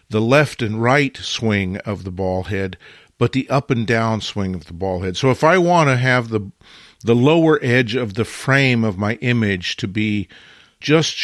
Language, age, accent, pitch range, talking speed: English, 50-69, American, 105-130 Hz, 205 wpm